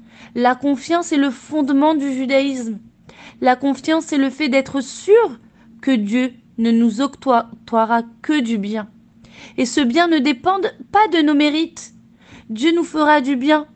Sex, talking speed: female, 160 wpm